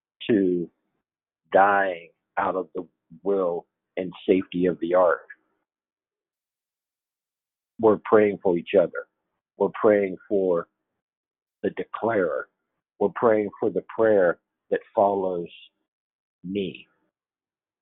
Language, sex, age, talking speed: English, male, 50-69, 100 wpm